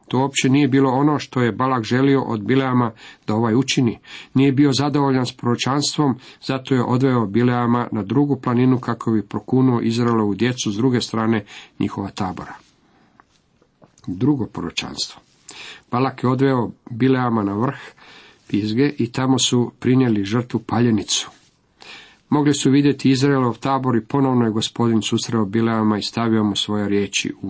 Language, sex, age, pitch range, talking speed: Croatian, male, 50-69, 110-135 Hz, 150 wpm